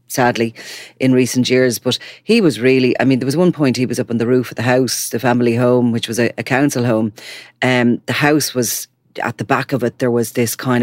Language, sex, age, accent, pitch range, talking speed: English, female, 30-49, Irish, 120-145 Hz, 250 wpm